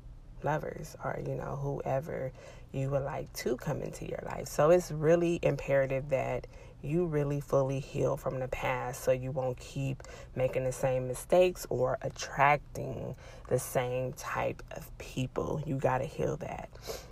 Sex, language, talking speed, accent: female, English, 160 wpm, American